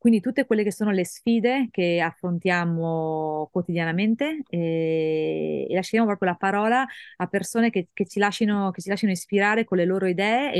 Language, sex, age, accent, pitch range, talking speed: Italian, female, 30-49, native, 175-210 Hz, 155 wpm